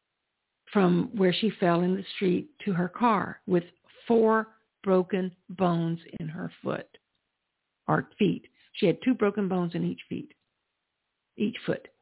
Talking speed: 145 wpm